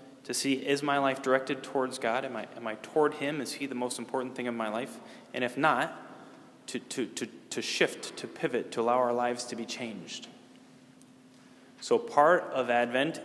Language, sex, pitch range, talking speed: English, male, 120-140 Hz, 200 wpm